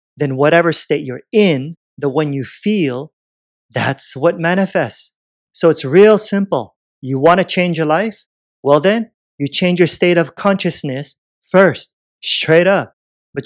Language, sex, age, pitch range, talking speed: English, male, 30-49, 140-190 Hz, 150 wpm